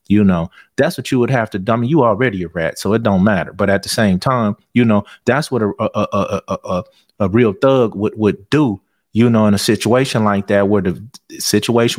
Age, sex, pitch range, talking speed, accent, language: 30-49, male, 100-115 Hz, 250 wpm, American, English